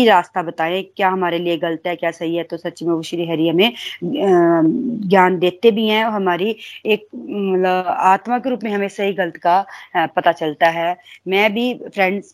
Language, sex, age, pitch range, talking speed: Hindi, female, 20-39, 175-225 Hz, 155 wpm